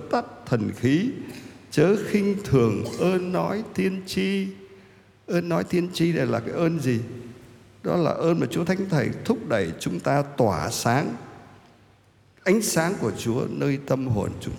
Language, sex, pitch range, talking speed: Vietnamese, male, 105-155 Hz, 165 wpm